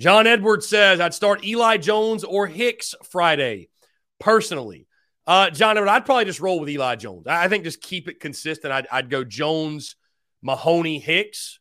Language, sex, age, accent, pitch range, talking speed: English, male, 30-49, American, 140-210 Hz, 170 wpm